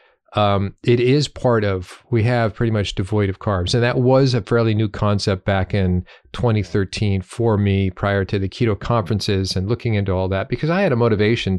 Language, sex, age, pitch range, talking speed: English, male, 40-59, 100-125 Hz, 200 wpm